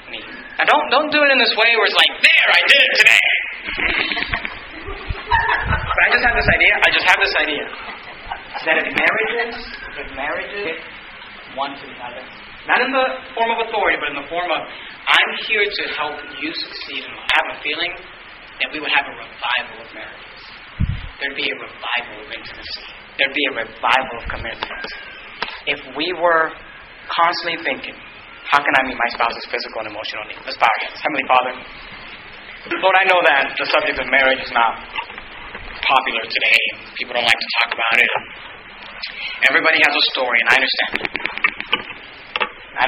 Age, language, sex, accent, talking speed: 30-49, English, male, American, 175 wpm